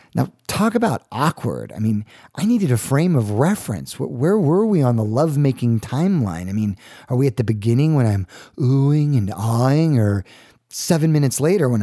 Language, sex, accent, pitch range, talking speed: English, male, American, 115-160 Hz, 185 wpm